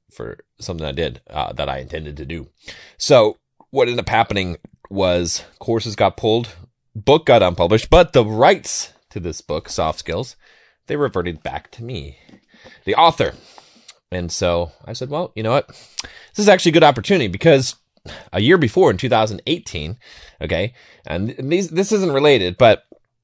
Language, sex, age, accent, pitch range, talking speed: English, male, 30-49, American, 85-115 Hz, 165 wpm